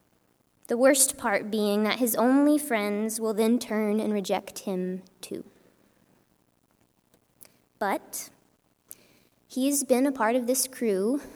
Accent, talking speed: American, 120 wpm